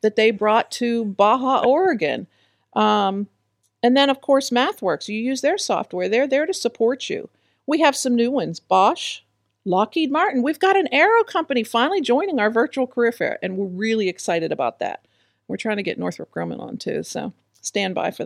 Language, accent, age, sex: English, American, 50-69, female